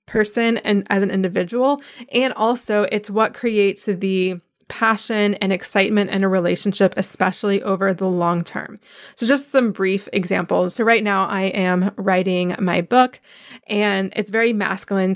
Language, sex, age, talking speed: English, female, 20-39, 155 wpm